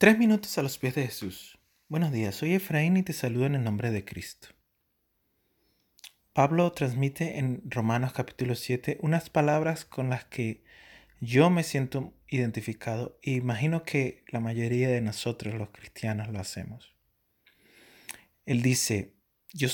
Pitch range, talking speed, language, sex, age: 110-140 Hz, 150 wpm, Spanish, male, 30-49